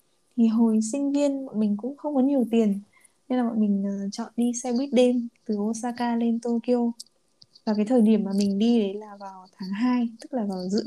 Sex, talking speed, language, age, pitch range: female, 225 wpm, Vietnamese, 20-39, 205-245 Hz